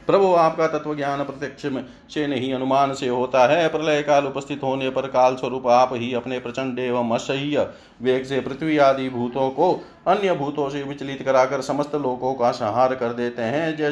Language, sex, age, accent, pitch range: Hindi, male, 40-59, native, 125-150 Hz